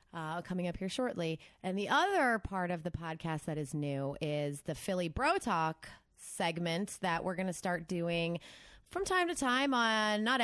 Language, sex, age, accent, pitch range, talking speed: English, female, 20-39, American, 165-200 Hz, 190 wpm